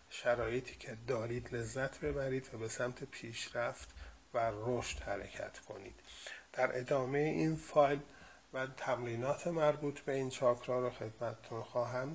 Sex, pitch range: male, 115-140 Hz